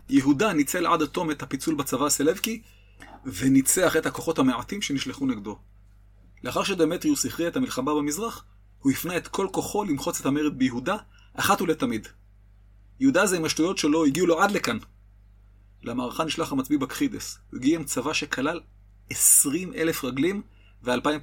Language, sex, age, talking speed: Hebrew, male, 30-49, 150 wpm